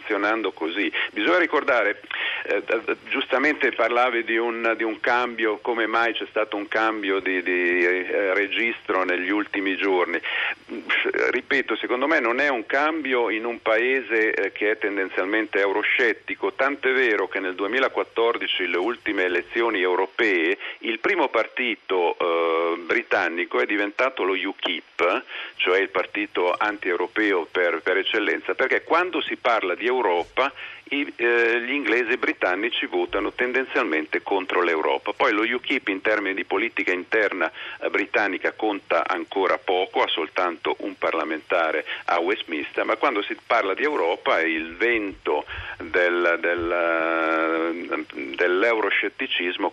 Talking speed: 130 wpm